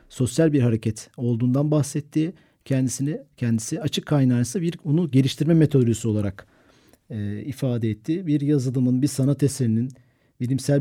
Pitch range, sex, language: 115-140 Hz, male, Turkish